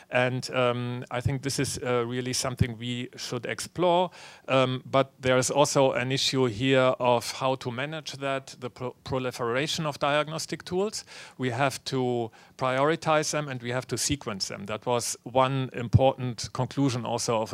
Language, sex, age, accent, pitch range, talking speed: English, male, 40-59, German, 115-130 Hz, 165 wpm